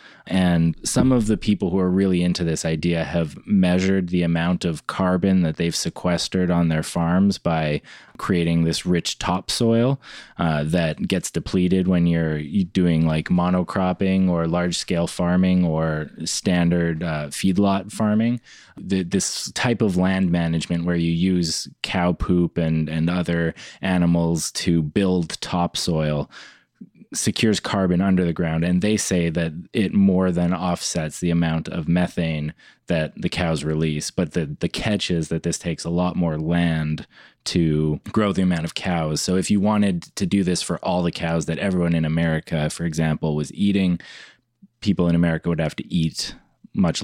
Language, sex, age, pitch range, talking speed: English, male, 20-39, 80-90 Hz, 165 wpm